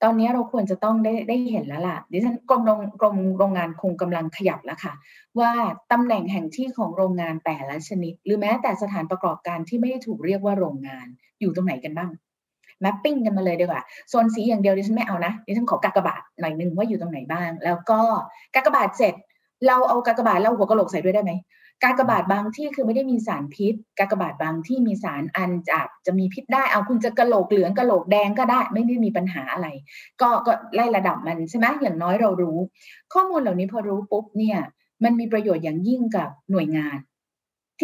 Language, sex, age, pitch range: Thai, female, 20-39, 175-230 Hz